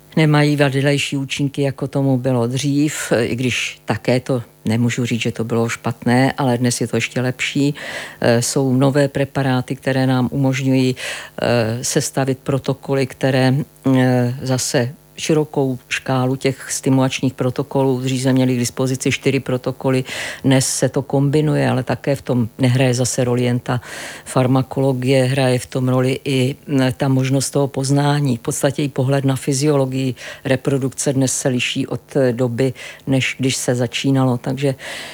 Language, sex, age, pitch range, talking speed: Czech, female, 50-69, 130-140 Hz, 150 wpm